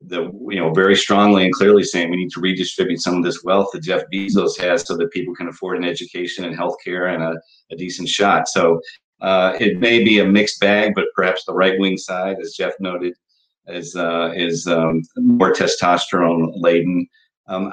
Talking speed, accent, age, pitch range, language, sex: 200 wpm, American, 40-59, 90-105 Hz, English, male